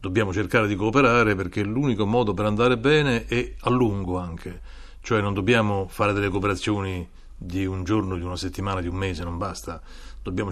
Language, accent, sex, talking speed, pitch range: Italian, native, male, 185 wpm, 90-110 Hz